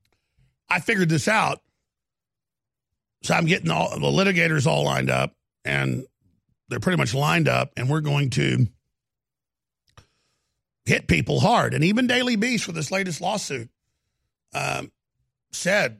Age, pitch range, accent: 50-69, 135-185 Hz, American